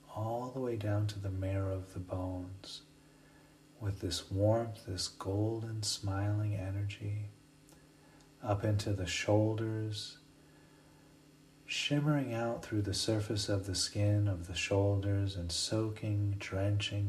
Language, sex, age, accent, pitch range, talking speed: English, male, 40-59, American, 95-115 Hz, 120 wpm